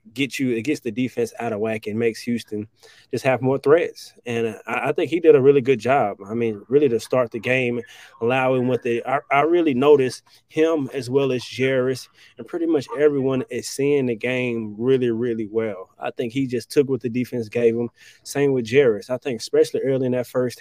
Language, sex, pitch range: English, male, 120-140 Hz